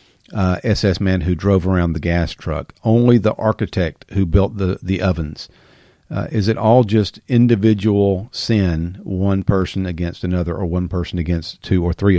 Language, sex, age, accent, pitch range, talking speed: English, male, 50-69, American, 90-110 Hz, 170 wpm